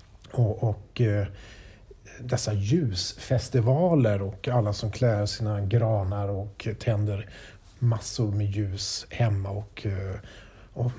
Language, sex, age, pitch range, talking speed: English, male, 50-69, 100-130 Hz, 100 wpm